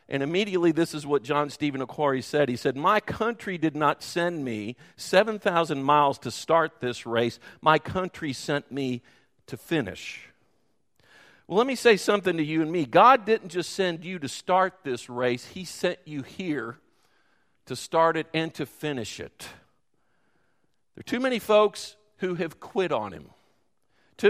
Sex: male